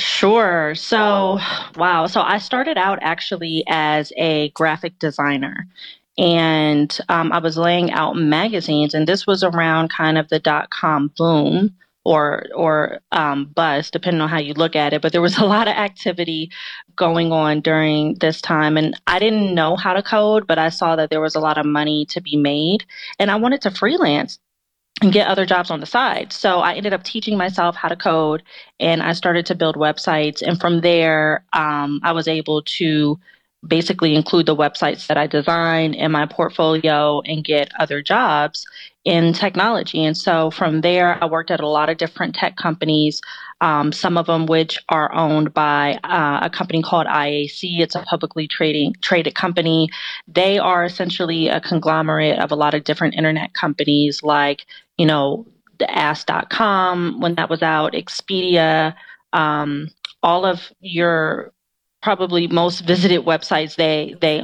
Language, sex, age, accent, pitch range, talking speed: English, female, 30-49, American, 155-180 Hz, 175 wpm